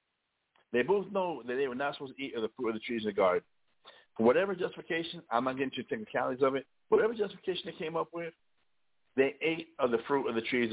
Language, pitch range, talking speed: English, 115-165 Hz, 245 wpm